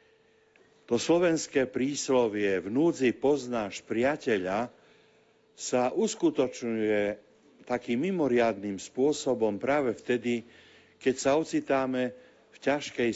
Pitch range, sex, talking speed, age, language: 105-135 Hz, male, 85 wpm, 50-69, Slovak